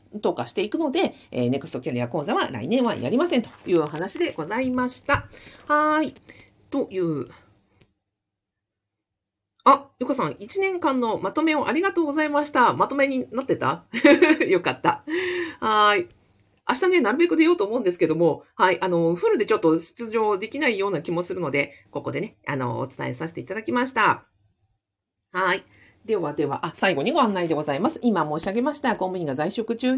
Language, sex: Japanese, female